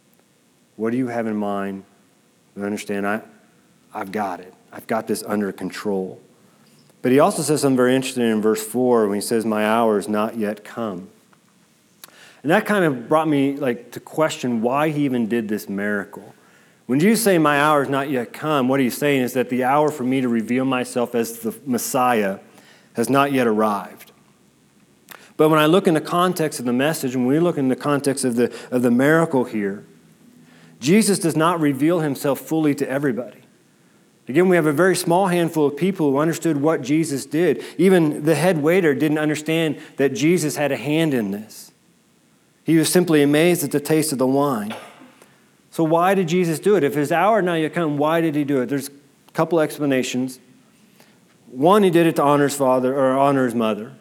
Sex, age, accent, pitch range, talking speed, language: male, 40-59, American, 120-160 Hz, 200 wpm, English